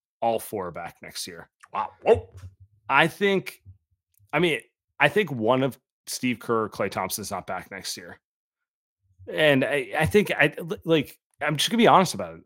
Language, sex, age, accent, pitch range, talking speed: English, male, 30-49, American, 115-155 Hz, 185 wpm